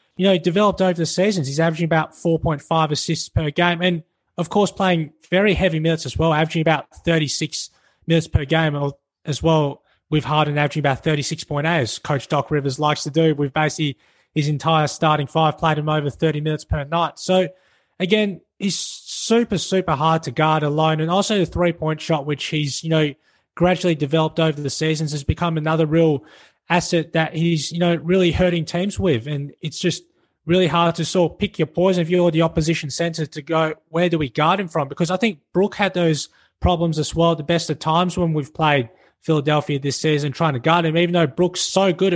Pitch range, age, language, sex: 155-175 Hz, 20-39, English, male